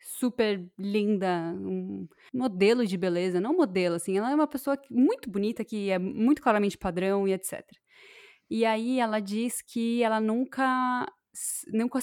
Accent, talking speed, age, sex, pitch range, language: Brazilian, 150 wpm, 10-29, female, 190-235 Hz, Portuguese